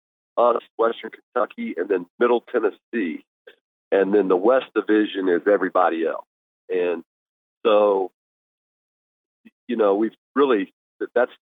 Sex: male